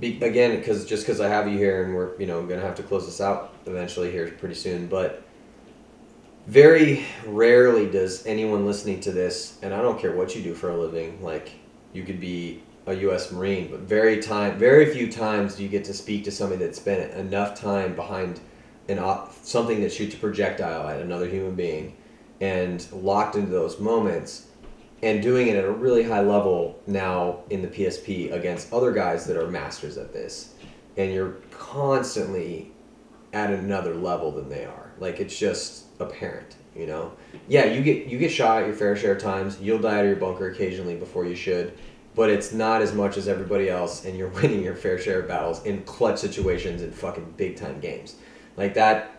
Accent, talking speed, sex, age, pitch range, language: American, 200 wpm, male, 30-49, 95-110 Hz, English